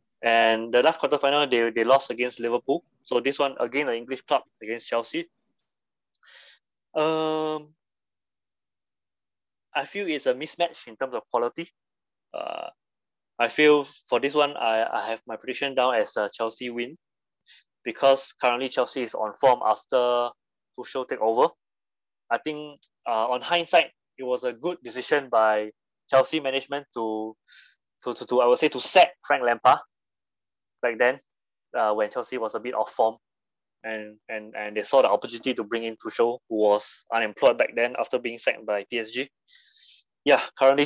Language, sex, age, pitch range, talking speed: English, male, 20-39, 110-140 Hz, 165 wpm